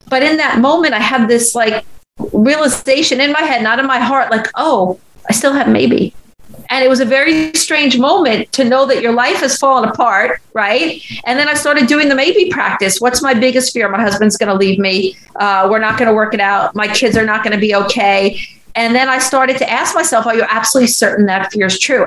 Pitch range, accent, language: 210-255 Hz, American, English